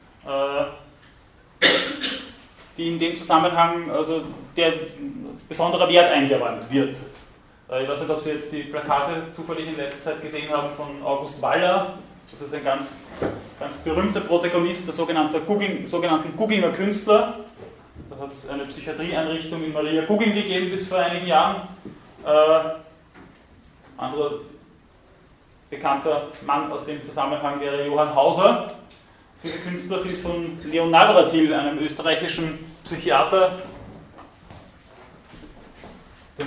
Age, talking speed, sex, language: 30-49, 115 wpm, male, German